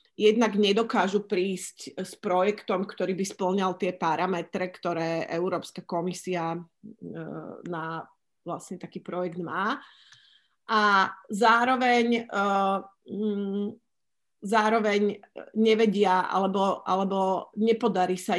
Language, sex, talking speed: Slovak, female, 85 wpm